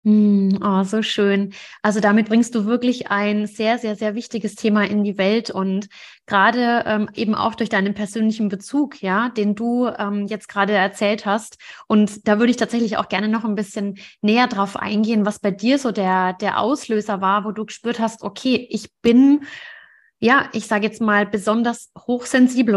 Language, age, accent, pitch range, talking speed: German, 20-39, German, 205-230 Hz, 180 wpm